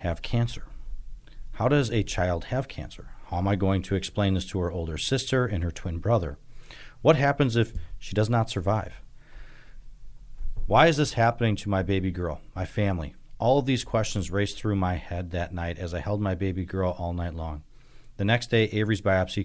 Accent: American